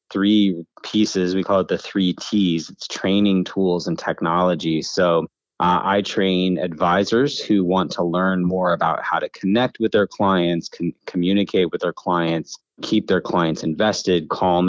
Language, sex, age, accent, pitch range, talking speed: English, male, 30-49, American, 85-100 Hz, 160 wpm